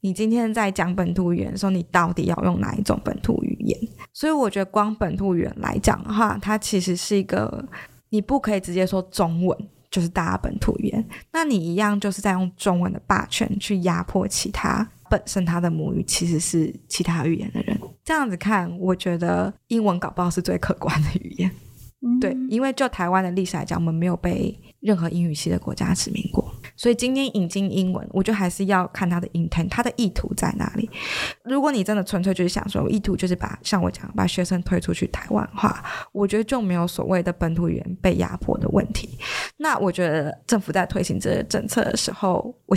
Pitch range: 175-210 Hz